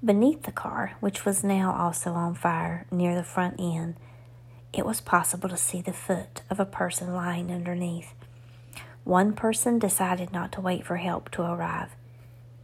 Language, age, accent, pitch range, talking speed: English, 40-59, American, 120-190 Hz, 165 wpm